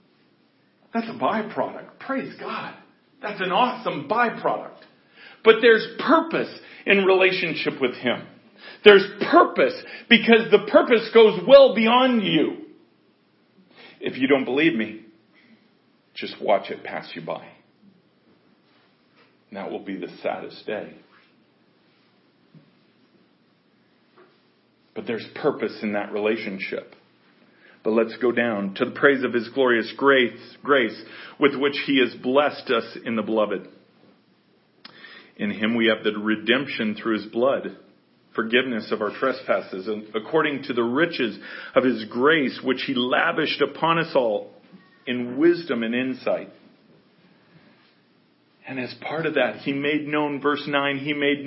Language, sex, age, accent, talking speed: English, male, 40-59, American, 130 wpm